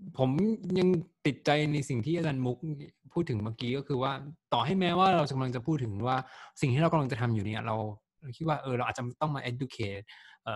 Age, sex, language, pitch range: 20-39, male, Thai, 115-145 Hz